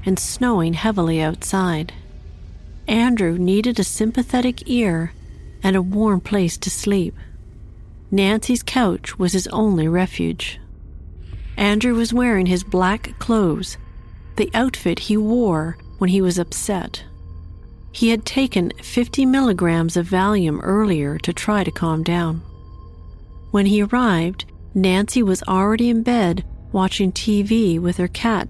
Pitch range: 155-215 Hz